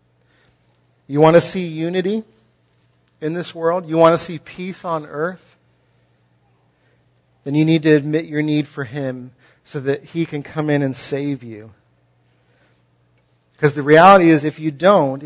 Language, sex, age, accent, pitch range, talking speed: English, male, 40-59, American, 115-165 Hz, 155 wpm